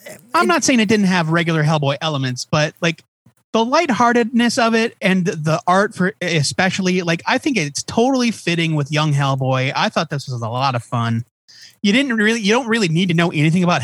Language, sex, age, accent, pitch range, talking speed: English, male, 30-49, American, 160-210 Hz, 210 wpm